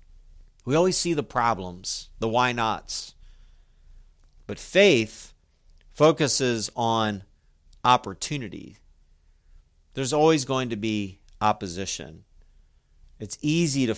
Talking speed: 95 wpm